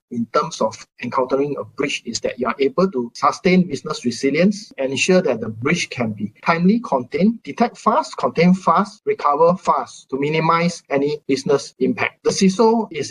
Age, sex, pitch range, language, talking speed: 20-39, male, 135-200 Hz, English, 170 wpm